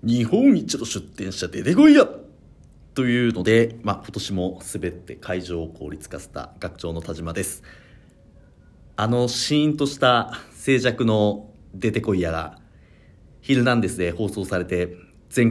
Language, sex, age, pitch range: Japanese, male, 40-59, 90-125 Hz